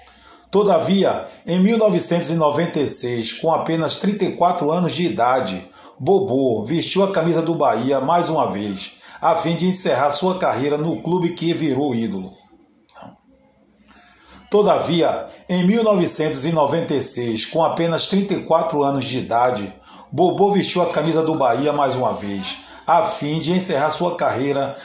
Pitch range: 140-180 Hz